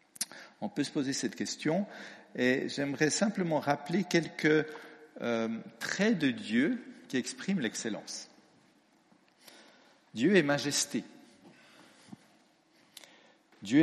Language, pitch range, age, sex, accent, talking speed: French, 125-185 Hz, 60-79, male, French, 95 wpm